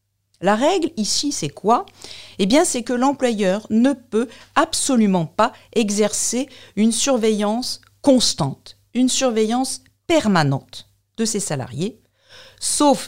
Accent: French